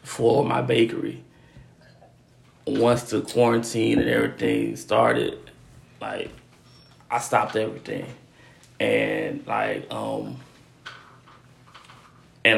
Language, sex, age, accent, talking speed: English, male, 20-39, American, 80 wpm